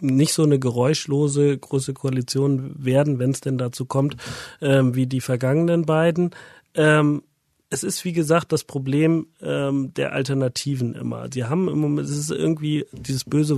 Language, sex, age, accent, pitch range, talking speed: German, male, 40-59, German, 130-150 Hz, 165 wpm